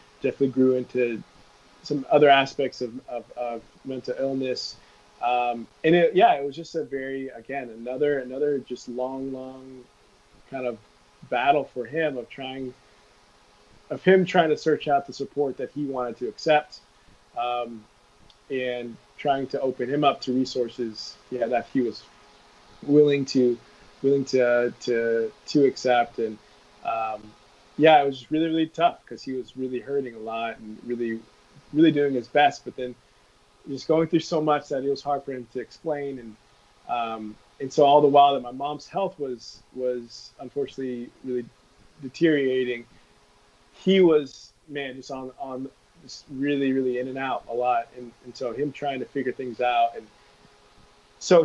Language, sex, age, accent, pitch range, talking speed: English, male, 20-39, American, 120-145 Hz, 170 wpm